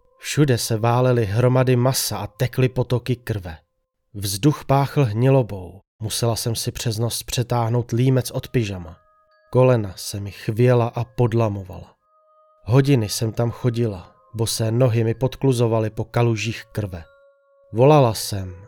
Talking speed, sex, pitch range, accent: 130 wpm, male, 110-135 Hz, native